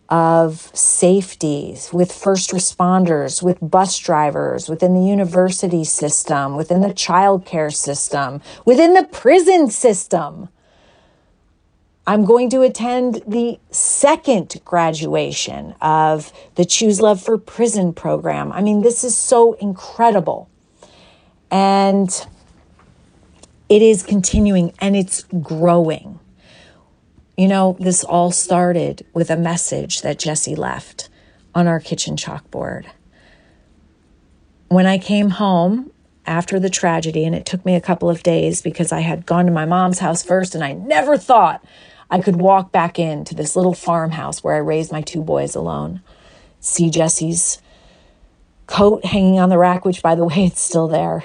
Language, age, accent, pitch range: English, 40-59, American, 160-195 Hz